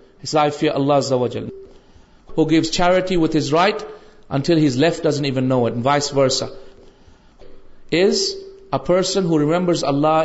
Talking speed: 170 wpm